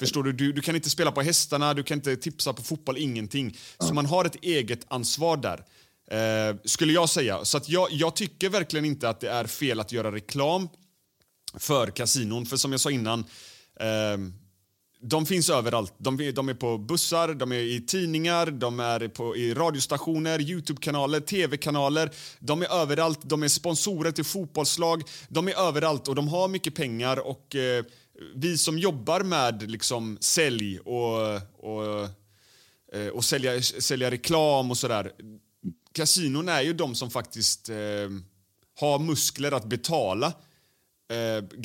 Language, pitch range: Swedish, 115-160 Hz